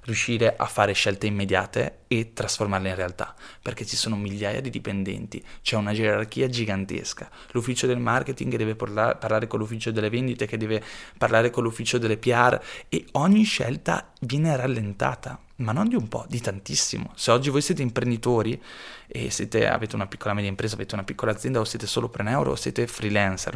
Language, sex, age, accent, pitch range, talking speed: Italian, male, 20-39, native, 100-120 Hz, 180 wpm